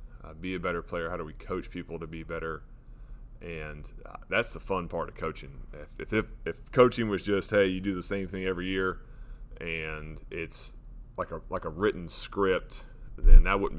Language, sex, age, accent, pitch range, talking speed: English, male, 30-49, American, 85-115 Hz, 200 wpm